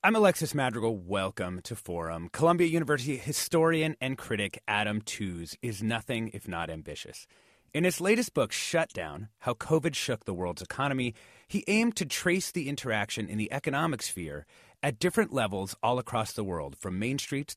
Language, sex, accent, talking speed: English, male, American, 165 wpm